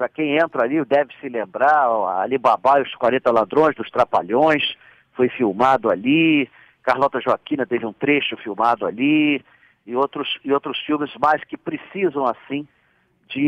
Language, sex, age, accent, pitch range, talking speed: Portuguese, male, 50-69, Brazilian, 135-190 Hz, 155 wpm